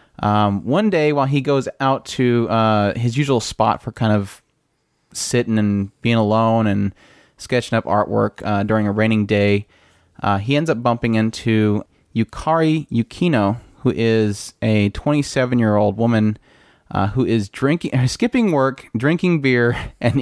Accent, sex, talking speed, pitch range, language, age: American, male, 150 wpm, 105-135 Hz, English, 30-49